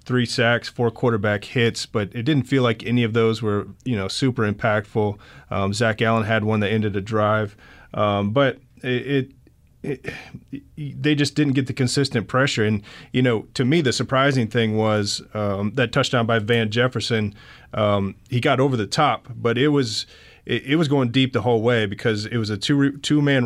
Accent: American